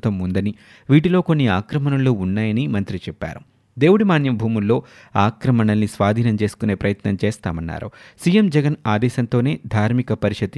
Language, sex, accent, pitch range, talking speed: Telugu, male, native, 100-125 Hz, 110 wpm